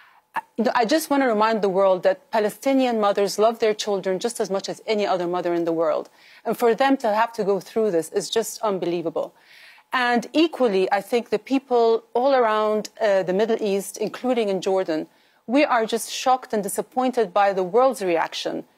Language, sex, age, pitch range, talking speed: English, female, 30-49, 200-245 Hz, 190 wpm